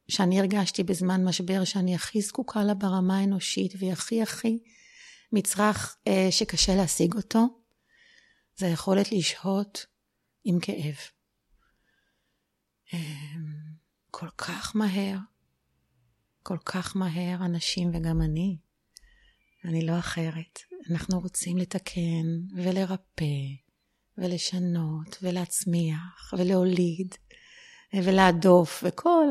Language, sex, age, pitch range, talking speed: Hebrew, female, 30-49, 175-205 Hz, 85 wpm